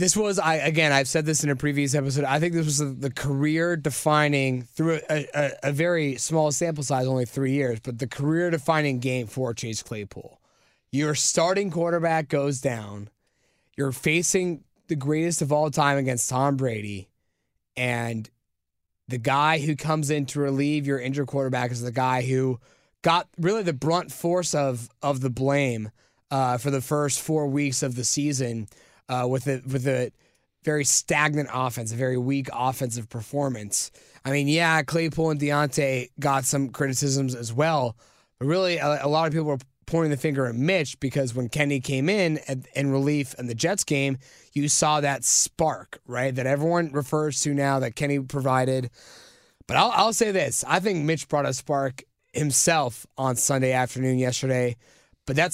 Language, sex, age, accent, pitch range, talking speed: English, male, 20-39, American, 130-155 Hz, 175 wpm